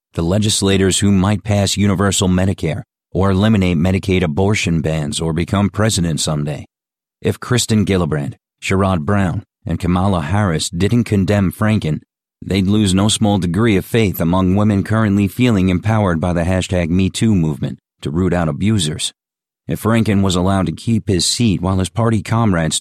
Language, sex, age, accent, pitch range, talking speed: English, male, 40-59, American, 85-105 Hz, 160 wpm